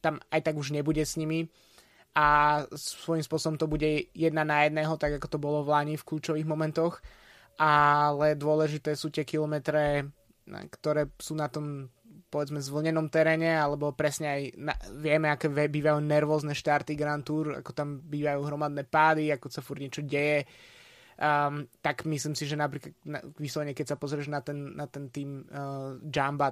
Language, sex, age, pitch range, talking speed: Slovak, male, 20-39, 140-155 Hz, 165 wpm